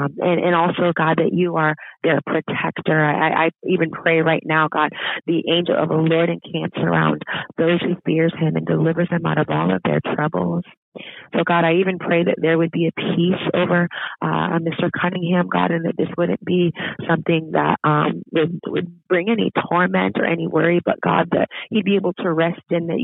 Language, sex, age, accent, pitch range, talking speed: English, female, 30-49, American, 150-175 Hz, 205 wpm